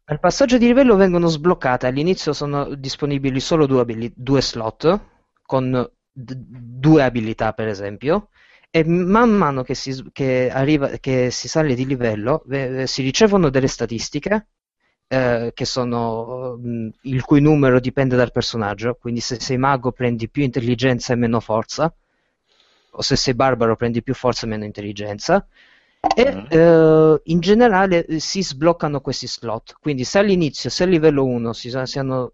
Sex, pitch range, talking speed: male, 120-155 Hz, 160 wpm